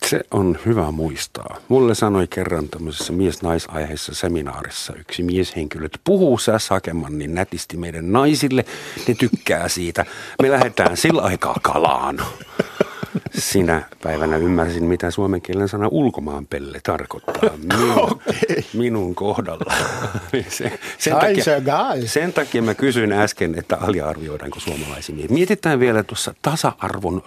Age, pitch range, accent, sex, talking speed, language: 50-69, 80-115 Hz, native, male, 120 wpm, Finnish